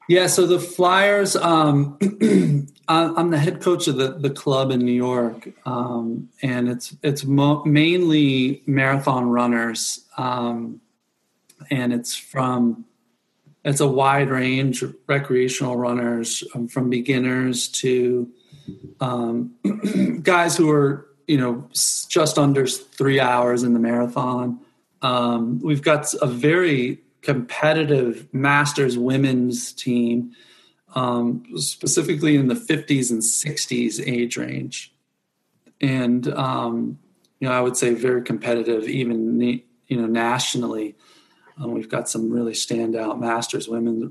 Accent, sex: American, male